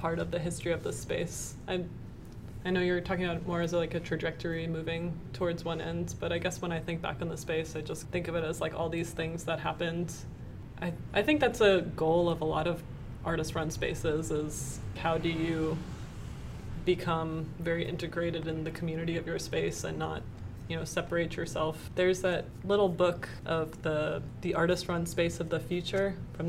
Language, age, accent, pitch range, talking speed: English, 20-39, American, 160-175 Hz, 205 wpm